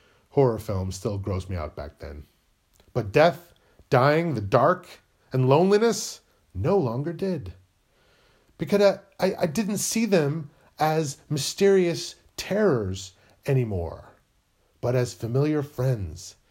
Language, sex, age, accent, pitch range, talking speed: English, male, 40-59, American, 95-155 Hz, 120 wpm